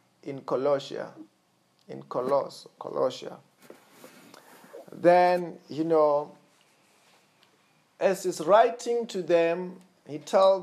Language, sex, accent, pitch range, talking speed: English, male, South African, 140-185 Hz, 85 wpm